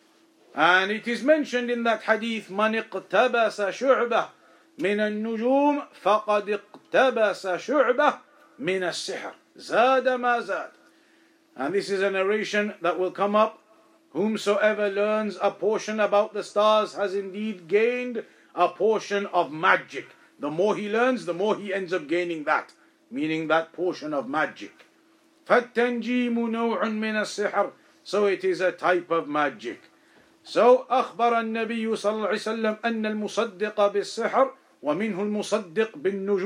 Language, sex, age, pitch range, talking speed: English, male, 50-69, 200-245 Hz, 115 wpm